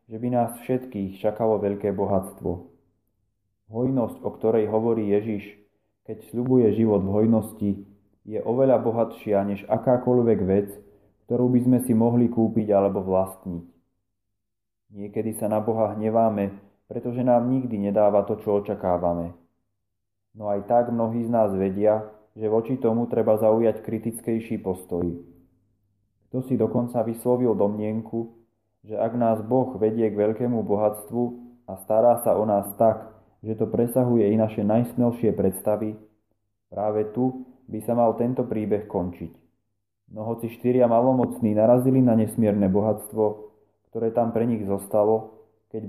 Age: 20-39